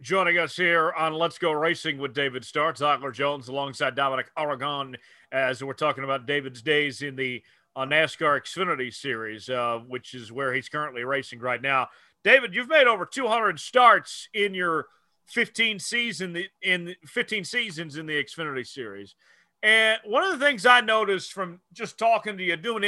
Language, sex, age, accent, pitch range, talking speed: English, male, 40-59, American, 150-210 Hz, 170 wpm